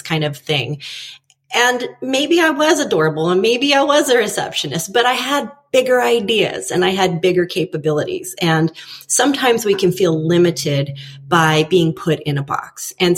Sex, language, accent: female, English, American